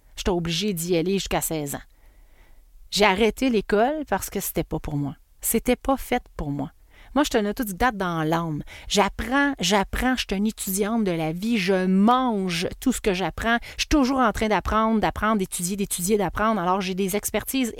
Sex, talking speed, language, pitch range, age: female, 210 wpm, French, 185-240 Hz, 30-49